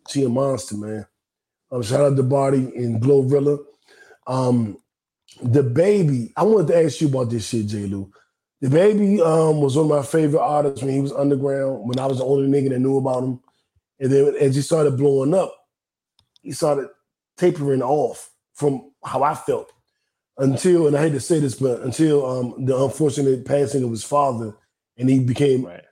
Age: 20-39